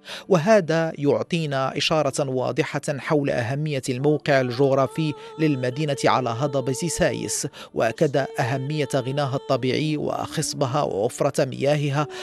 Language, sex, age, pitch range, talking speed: Arabic, male, 50-69, 130-150 Hz, 95 wpm